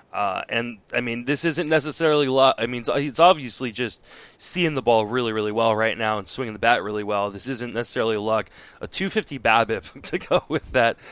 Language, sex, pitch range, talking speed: English, male, 110-135 Hz, 205 wpm